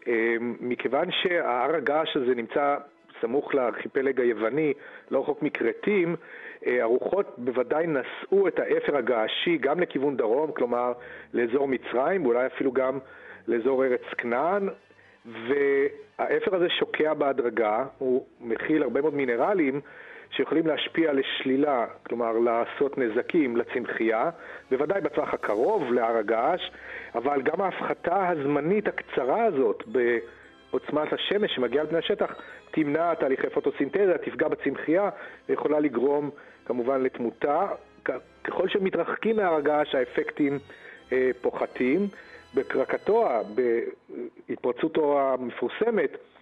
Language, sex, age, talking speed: Hebrew, male, 40-59, 105 wpm